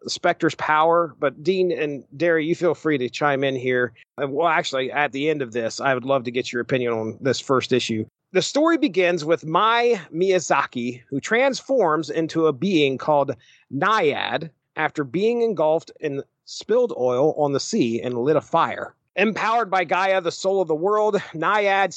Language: English